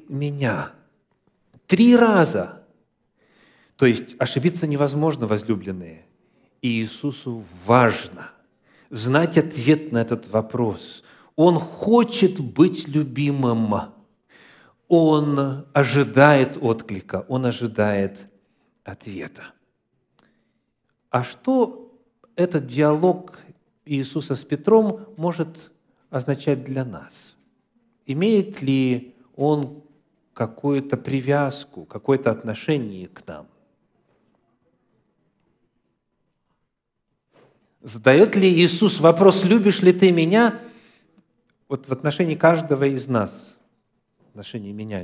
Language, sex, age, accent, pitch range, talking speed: Russian, male, 50-69, native, 125-175 Hz, 85 wpm